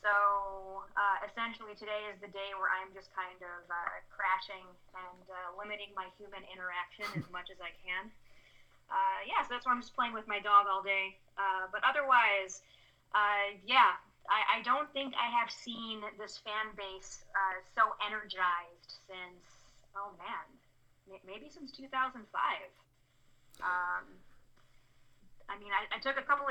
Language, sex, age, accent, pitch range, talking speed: English, female, 20-39, American, 185-220 Hz, 160 wpm